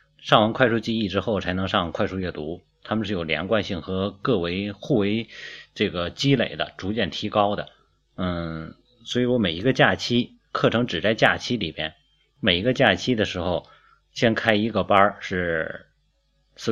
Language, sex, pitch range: Chinese, male, 90-110 Hz